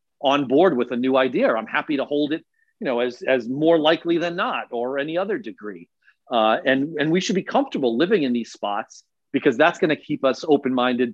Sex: male